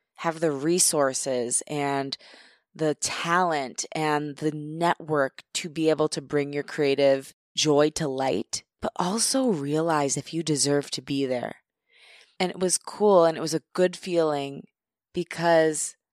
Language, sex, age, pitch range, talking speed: English, female, 20-39, 145-175 Hz, 145 wpm